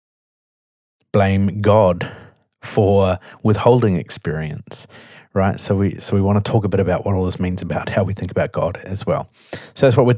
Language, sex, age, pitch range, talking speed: English, male, 30-49, 90-115 Hz, 190 wpm